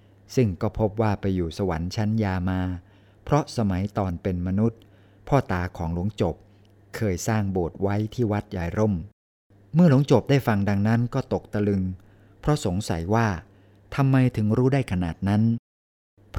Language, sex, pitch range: Thai, male, 95-115 Hz